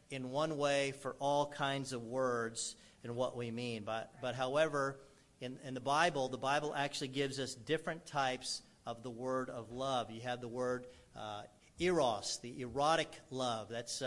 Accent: American